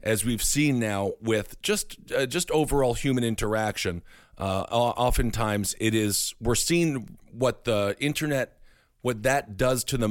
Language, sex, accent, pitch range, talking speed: English, male, American, 100-125 Hz, 150 wpm